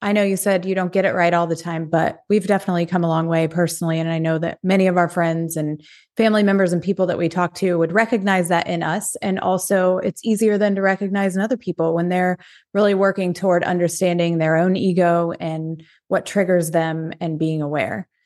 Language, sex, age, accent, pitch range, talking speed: English, female, 20-39, American, 175-210 Hz, 225 wpm